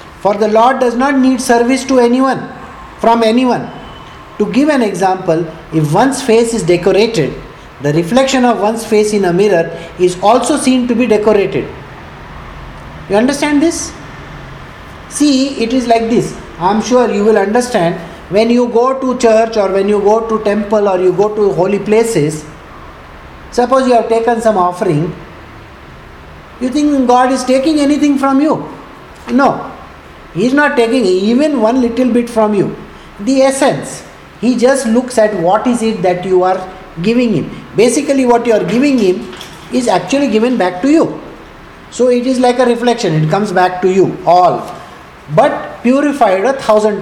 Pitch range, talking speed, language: 195-250 Hz, 170 wpm, English